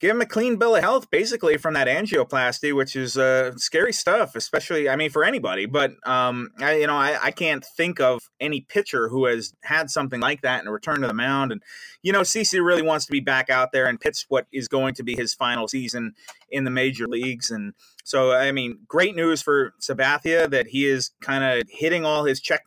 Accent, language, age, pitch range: American, English, 30-49, 130-155 Hz